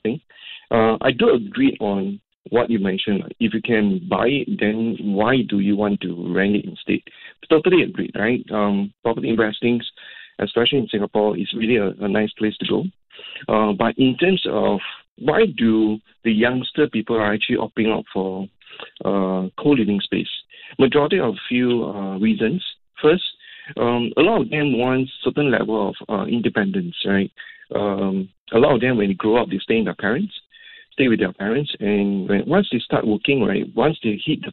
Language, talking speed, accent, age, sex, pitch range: English, 180 wpm, Malaysian, 50-69, male, 105-130 Hz